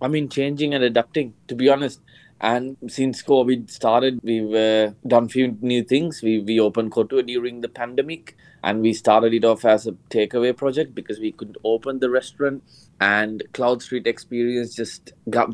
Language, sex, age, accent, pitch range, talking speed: English, male, 20-39, Indian, 115-130 Hz, 180 wpm